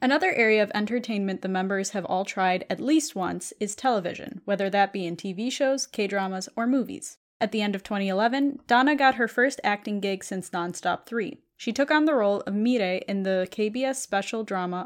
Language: English